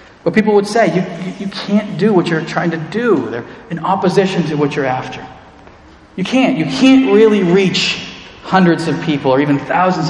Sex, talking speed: male, 190 wpm